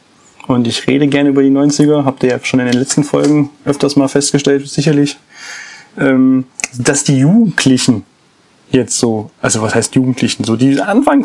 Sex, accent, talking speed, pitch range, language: male, German, 165 wpm, 125-145 Hz, German